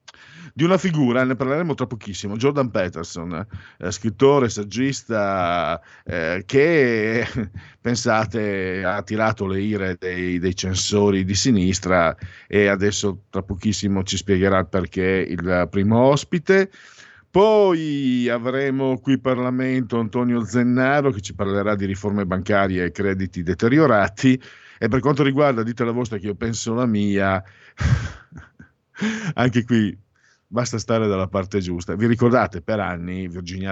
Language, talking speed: Italian, 130 wpm